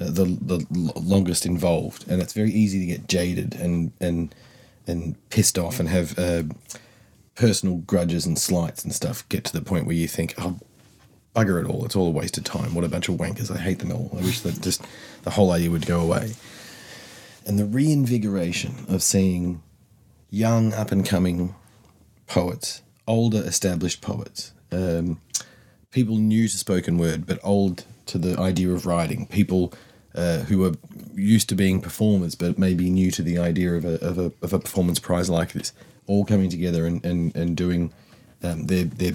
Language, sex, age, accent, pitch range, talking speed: English, male, 30-49, Australian, 85-105 Hz, 180 wpm